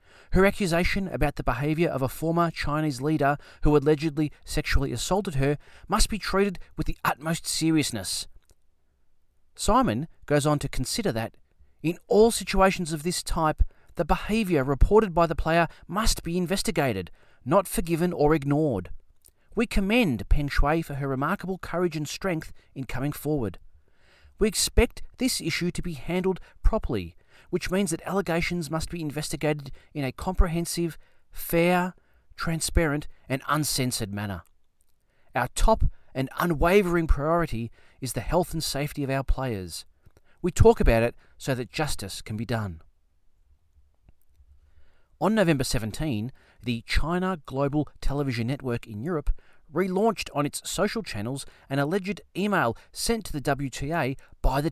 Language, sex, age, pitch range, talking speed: Italian, male, 30-49, 115-175 Hz, 145 wpm